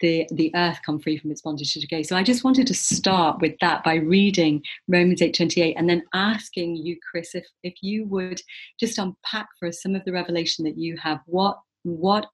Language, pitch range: English, 155-190 Hz